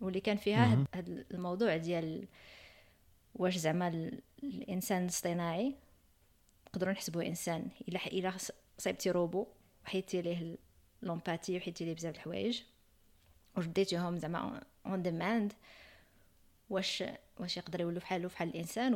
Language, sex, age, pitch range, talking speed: Arabic, female, 20-39, 165-190 Hz, 110 wpm